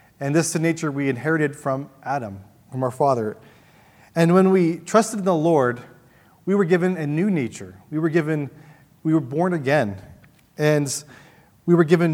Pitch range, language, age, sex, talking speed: 125-165 Hz, English, 30-49, male, 180 wpm